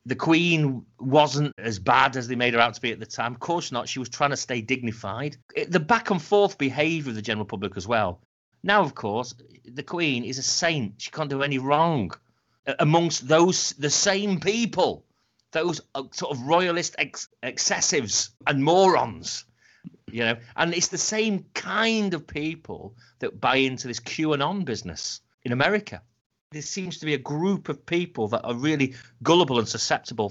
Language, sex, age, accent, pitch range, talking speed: English, male, 40-59, British, 120-165 Hz, 180 wpm